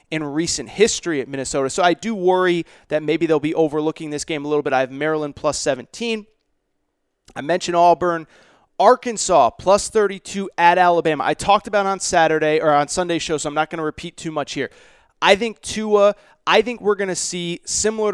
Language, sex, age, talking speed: English, male, 30-49, 200 wpm